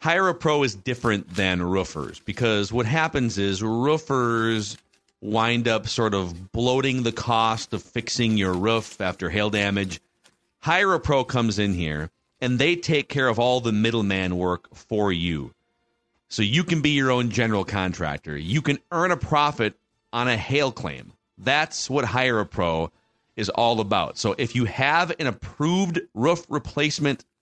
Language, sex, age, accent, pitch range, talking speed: English, male, 40-59, American, 105-140 Hz, 165 wpm